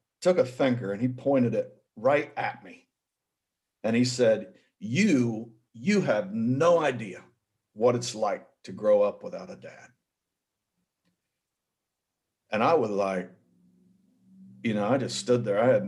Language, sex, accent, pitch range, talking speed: English, male, American, 110-150 Hz, 145 wpm